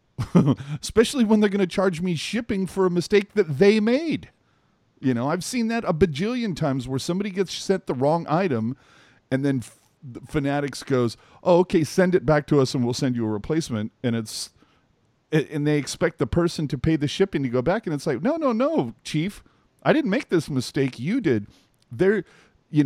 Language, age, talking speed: English, 40-59, 200 wpm